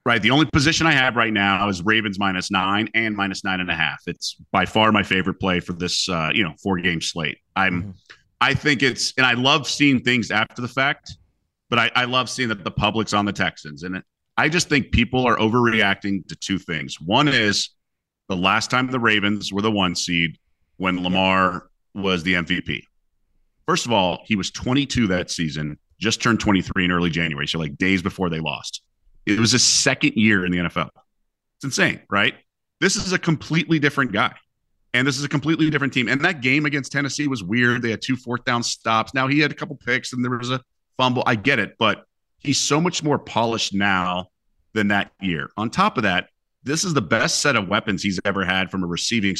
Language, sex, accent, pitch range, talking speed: English, male, American, 95-130 Hz, 220 wpm